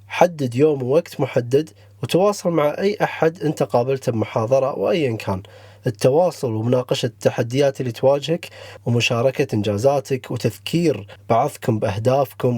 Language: Arabic